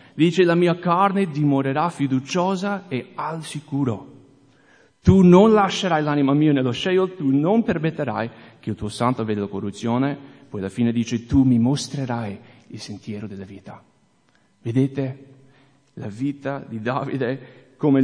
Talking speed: 145 wpm